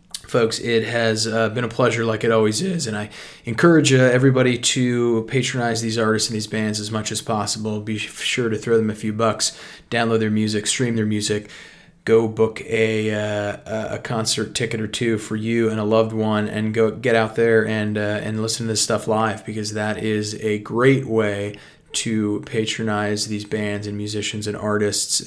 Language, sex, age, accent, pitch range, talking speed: English, male, 20-39, American, 105-115 Hz, 195 wpm